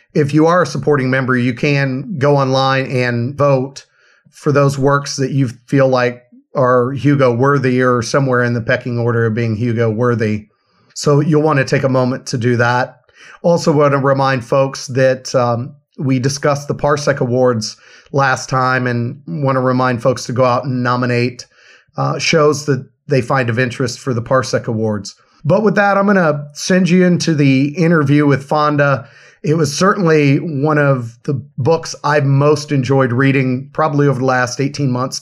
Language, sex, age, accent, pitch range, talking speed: English, male, 40-59, American, 125-145 Hz, 180 wpm